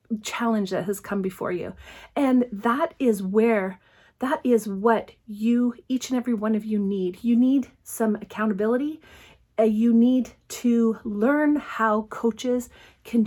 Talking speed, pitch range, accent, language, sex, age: 150 wpm, 210-245 Hz, American, English, female, 30-49